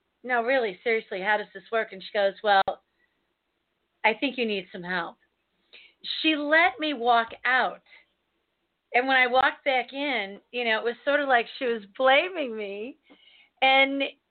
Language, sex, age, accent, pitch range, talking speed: English, female, 40-59, American, 210-285 Hz, 170 wpm